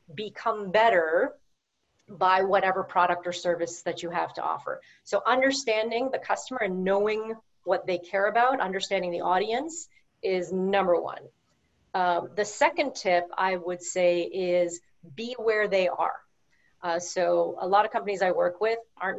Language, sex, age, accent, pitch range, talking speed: English, female, 40-59, American, 180-220 Hz, 155 wpm